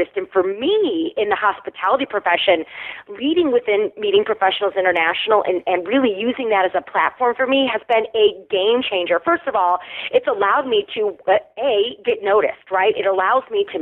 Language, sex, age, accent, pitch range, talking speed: English, female, 30-49, American, 195-320 Hz, 180 wpm